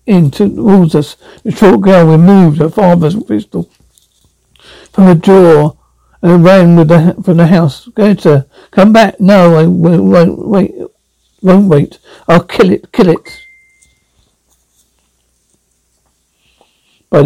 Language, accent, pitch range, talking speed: English, British, 150-190 Hz, 130 wpm